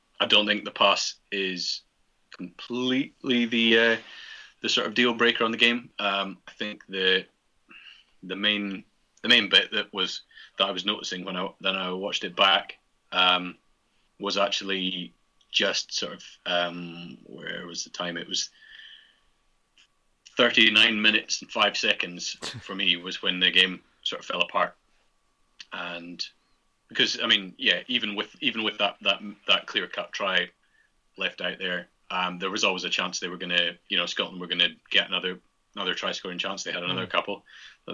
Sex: male